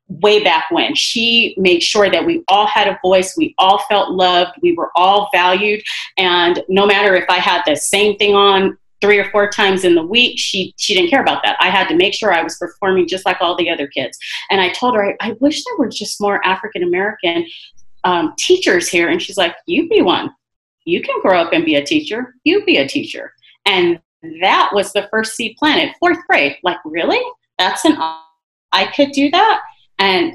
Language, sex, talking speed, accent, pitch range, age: English, female, 215 wpm, American, 185-300 Hz, 30-49